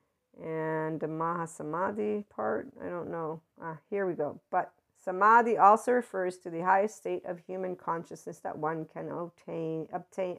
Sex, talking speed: female, 160 wpm